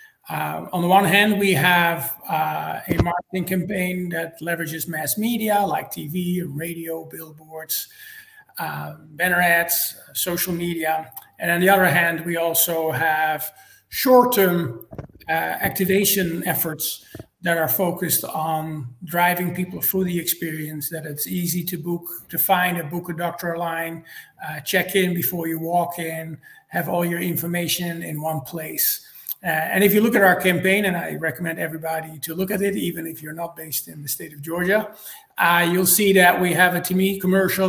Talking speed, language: 170 wpm, English